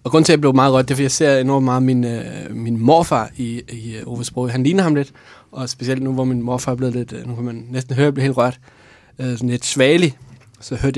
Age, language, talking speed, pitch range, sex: 20-39, English, 270 wpm, 120-140 Hz, male